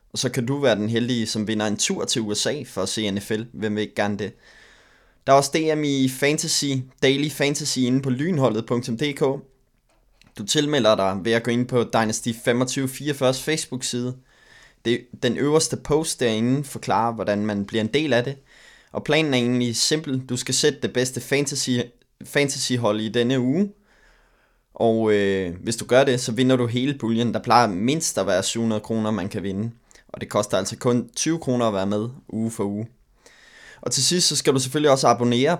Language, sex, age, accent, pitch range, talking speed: Danish, male, 20-39, native, 110-130 Hz, 195 wpm